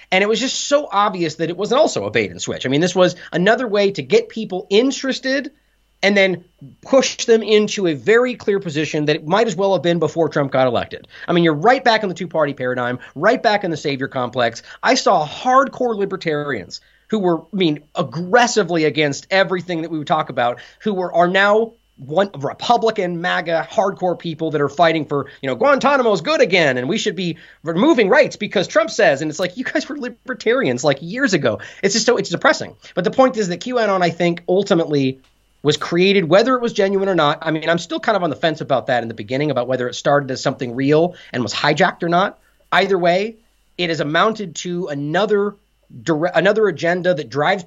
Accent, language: American, English